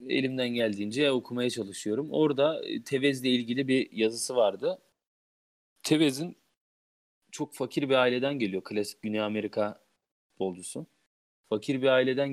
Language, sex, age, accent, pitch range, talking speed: Turkish, male, 40-59, native, 105-145 Hz, 115 wpm